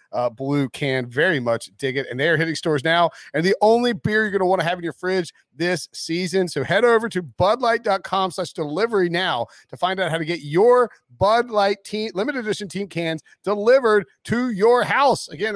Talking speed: 205 wpm